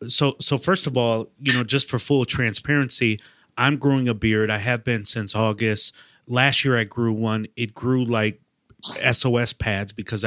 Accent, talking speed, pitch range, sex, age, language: American, 180 wpm, 110-130 Hz, male, 30-49, English